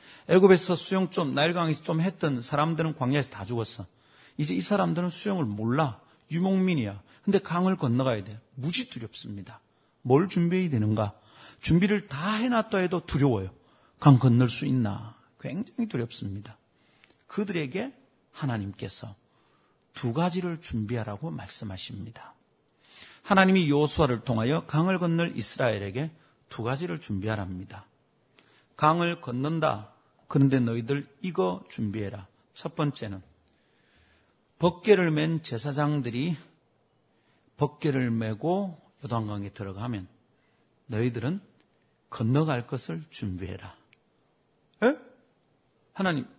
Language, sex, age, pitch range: Korean, male, 40-59, 115-175 Hz